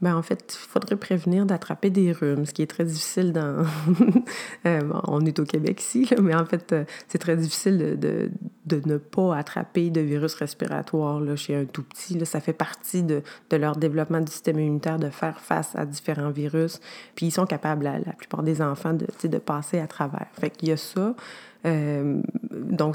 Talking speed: 195 wpm